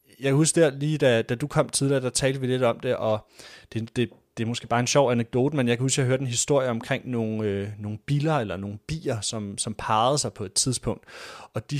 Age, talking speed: 30-49, 255 wpm